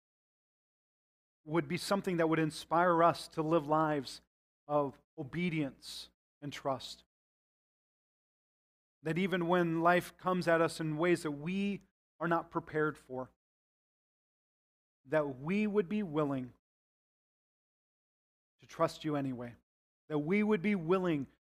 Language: English